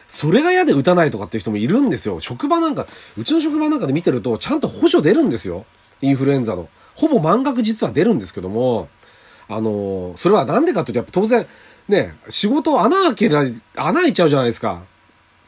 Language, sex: Japanese, male